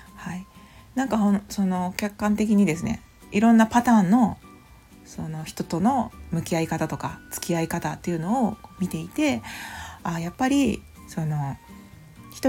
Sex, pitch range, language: female, 170-230 Hz, Japanese